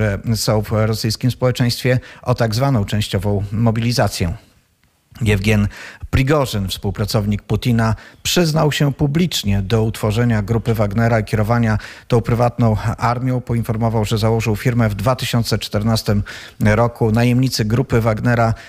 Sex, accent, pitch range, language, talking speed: male, native, 110-125 Hz, Polish, 115 wpm